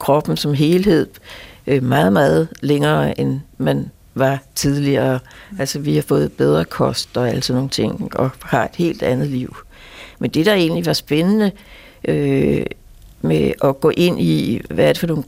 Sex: female